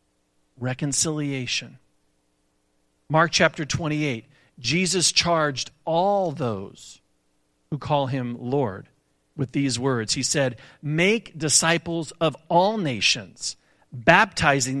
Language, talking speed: English, 95 wpm